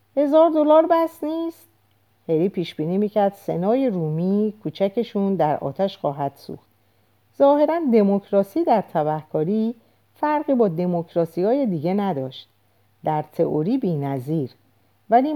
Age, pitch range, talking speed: 50-69, 150-225 Hz, 105 wpm